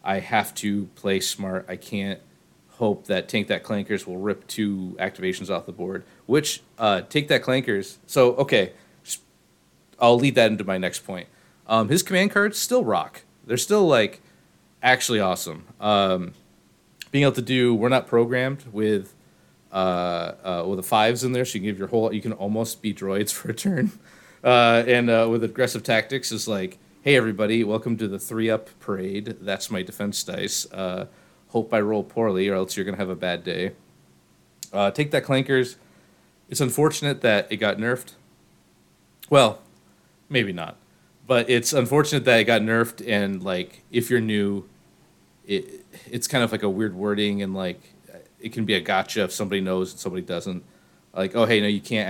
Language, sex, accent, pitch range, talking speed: English, male, American, 100-125 Hz, 185 wpm